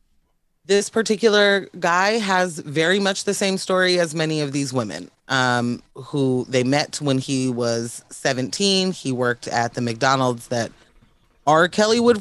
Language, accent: English, American